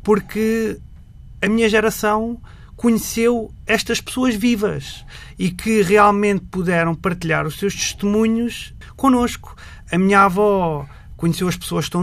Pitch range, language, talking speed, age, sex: 170-210 Hz, Portuguese, 125 wpm, 30-49, male